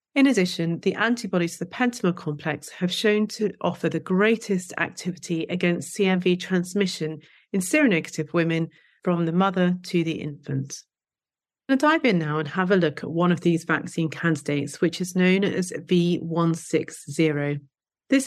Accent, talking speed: British, 155 wpm